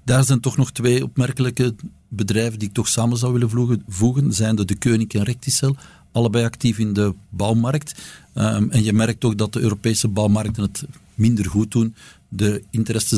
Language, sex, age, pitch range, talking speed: Dutch, male, 50-69, 100-115 Hz, 180 wpm